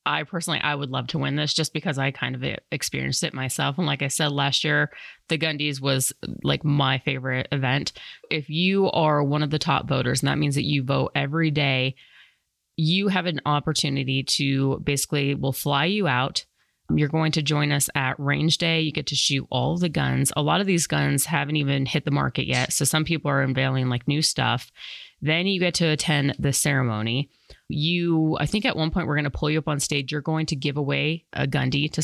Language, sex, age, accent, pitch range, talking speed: English, female, 30-49, American, 140-160 Hz, 220 wpm